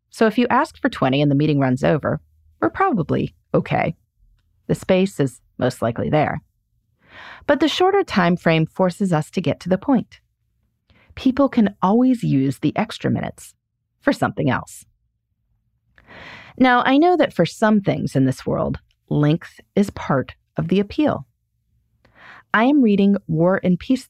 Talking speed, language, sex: 160 wpm, English, female